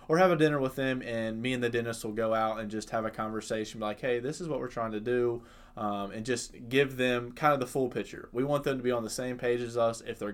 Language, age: English, 20-39